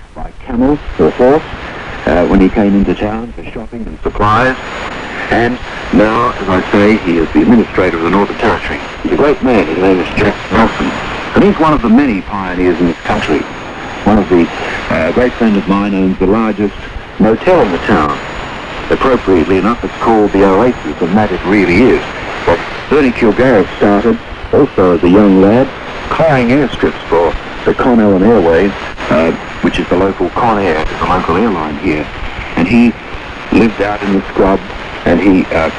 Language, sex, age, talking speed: English, male, 60-79, 175 wpm